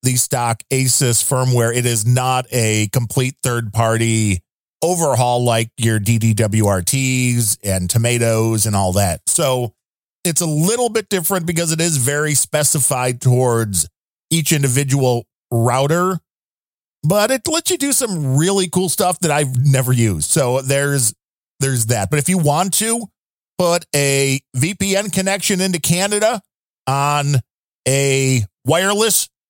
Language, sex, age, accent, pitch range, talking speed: English, male, 40-59, American, 125-170 Hz, 135 wpm